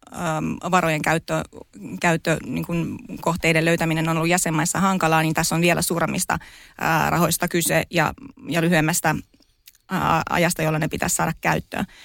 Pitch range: 165-195 Hz